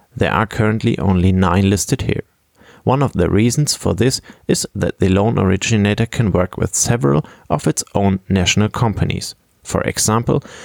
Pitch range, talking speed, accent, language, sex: 95-120 Hz, 165 wpm, German, English, male